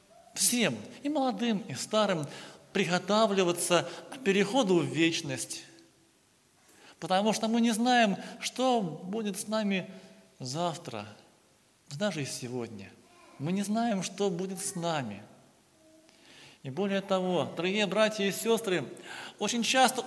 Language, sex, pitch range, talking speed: Russian, male, 180-230 Hz, 115 wpm